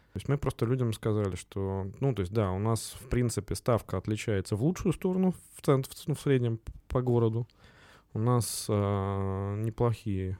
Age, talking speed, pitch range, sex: 20-39, 165 wpm, 100-125 Hz, male